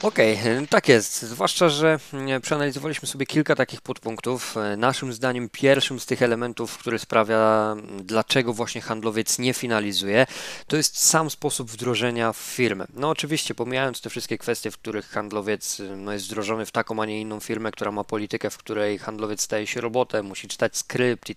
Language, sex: Polish, male